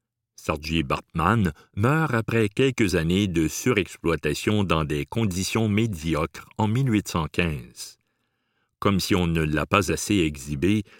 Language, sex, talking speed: French, male, 120 wpm